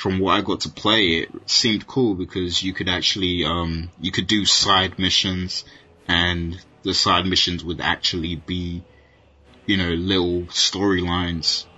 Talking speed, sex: 155 wpm, male